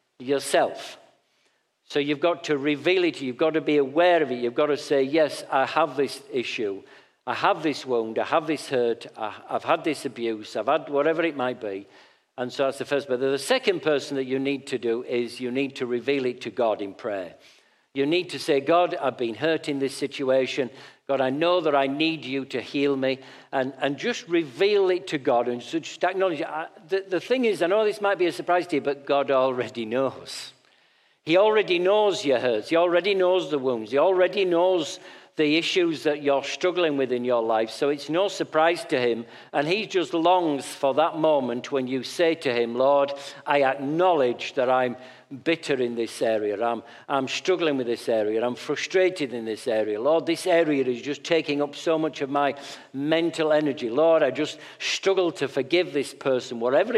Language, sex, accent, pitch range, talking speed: English, male, British, 130-170 Hz, 205 wpm